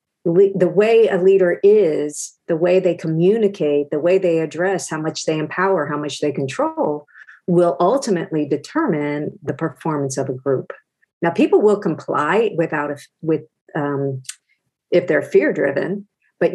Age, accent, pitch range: 50-69, American, 150-185 Hz